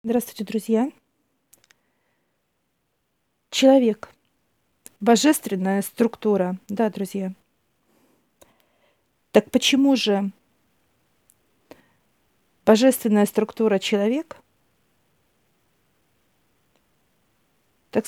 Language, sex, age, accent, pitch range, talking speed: Russian, female, 50-69, native, 200-250 Hz, 45 wpm